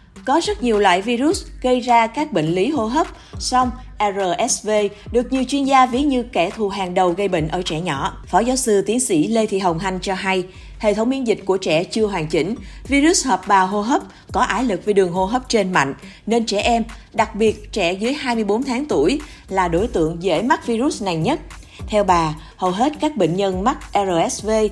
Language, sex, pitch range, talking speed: Vietnamese, female, 185-245 Hz, 220 wpm